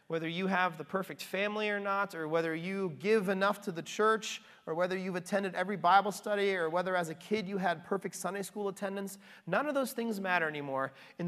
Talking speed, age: 220 wpm, 30-49